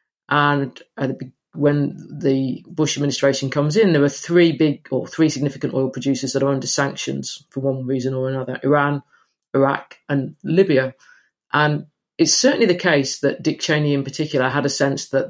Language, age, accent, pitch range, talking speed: English, 40-59, British, 135-150 Hz, 170 wpm